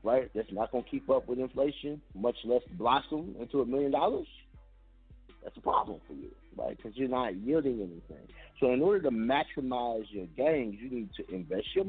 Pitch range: 100-150 Hz